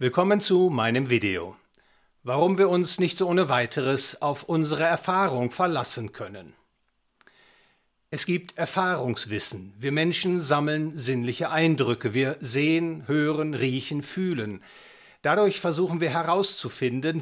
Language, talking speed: English, 115 wpm